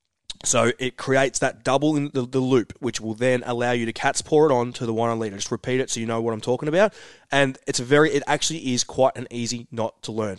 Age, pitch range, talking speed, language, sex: 20-39, 120-145 Hz, 275 wpm, English, male